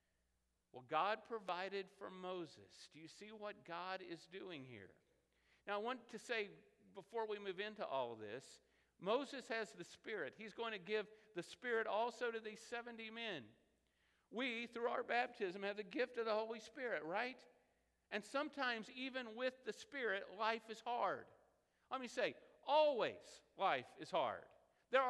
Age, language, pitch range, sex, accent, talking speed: 50-69, English, 175-235 Hz, male, American, 165 wpm